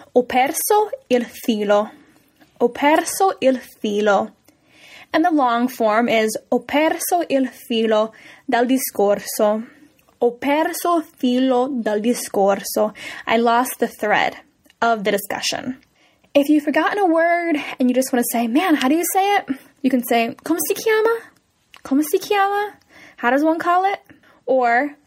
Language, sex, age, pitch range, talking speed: Italian, female, 10-29, 225-310 Hz, 155 wpm